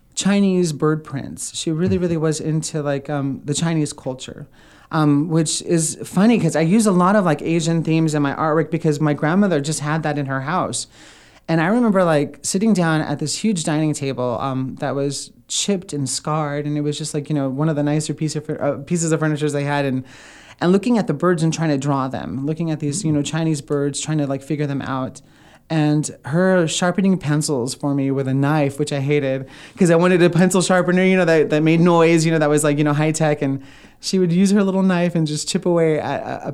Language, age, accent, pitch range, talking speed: English, 30-49, American, 140-165 Hz, 235 wpm